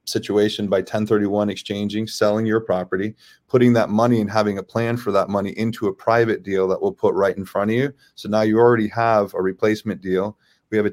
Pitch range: 95-110 Hz